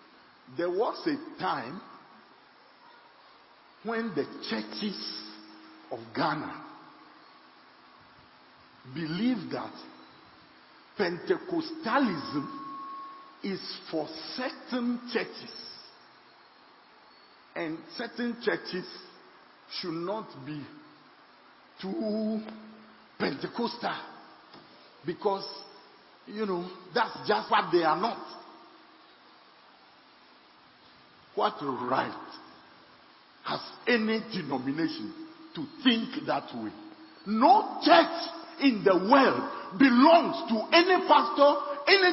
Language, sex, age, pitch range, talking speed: English, male, 50-69, 215-315 Hz, 75 wpm